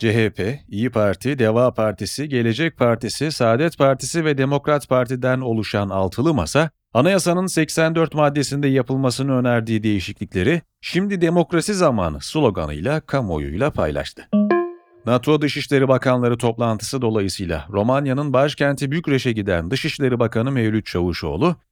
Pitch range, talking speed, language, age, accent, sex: 115-155 Hz, 110 wpm, Turkish, 40-59, native, male